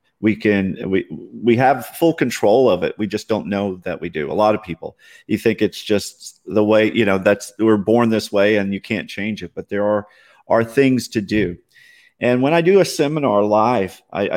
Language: English